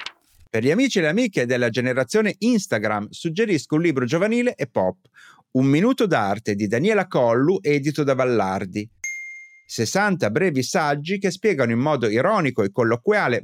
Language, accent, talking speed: Italian, native, 150 wpm